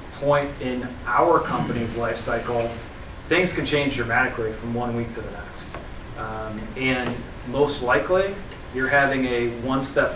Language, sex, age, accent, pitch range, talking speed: English, male, 30-49, American, 120-140 Hz, 150 wpm